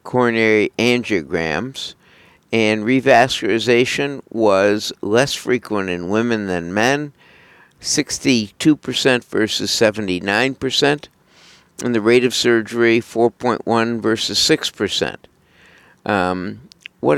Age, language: 60-79, English